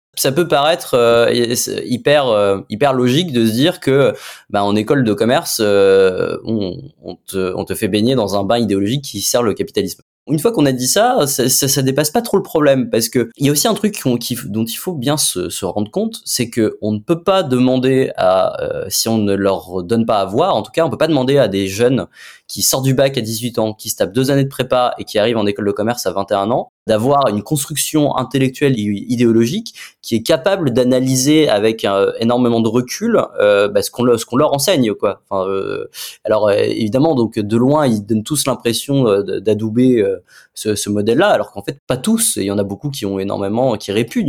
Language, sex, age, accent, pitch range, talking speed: French, male, 20-39, French, 110-145 Hz, 235 wpm